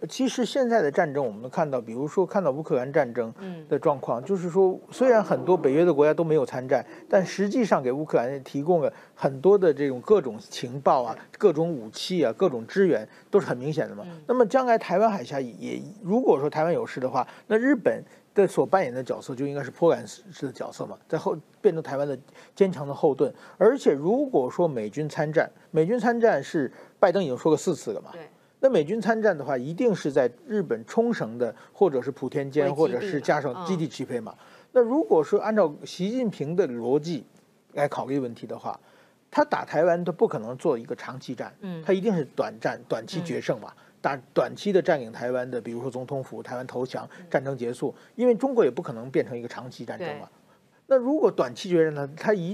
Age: 50-69